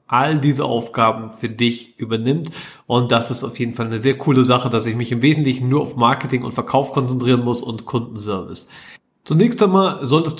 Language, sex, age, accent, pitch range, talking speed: German, male, 30-49, German, 130-155 Hz, 190 wpm